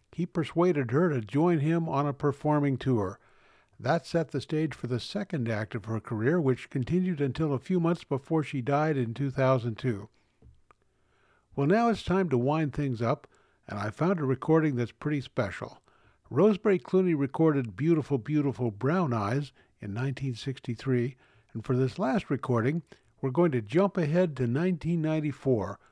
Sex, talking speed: male, 160 wpm